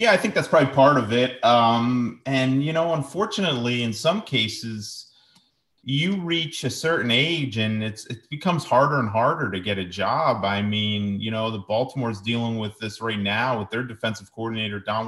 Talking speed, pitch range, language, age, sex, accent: 190 wpm, 100-125 Hz, English, 30-49, male, American